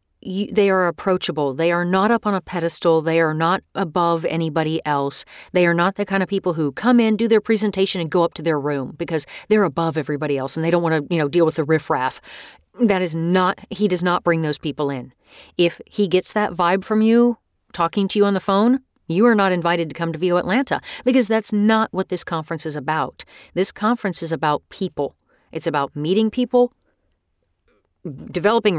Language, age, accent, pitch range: English, 40-59, American, 155-210 Hz